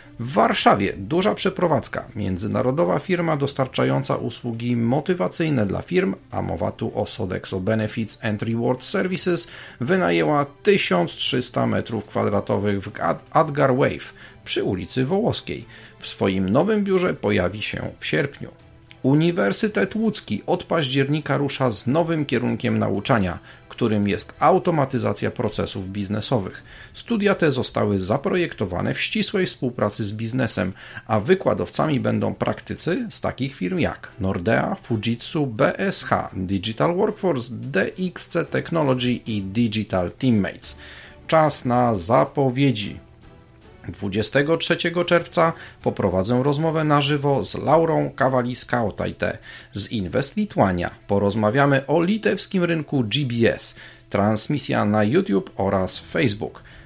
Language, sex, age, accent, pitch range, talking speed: Polish, male, 40-59, native, 105-155 Hz, 110 wpm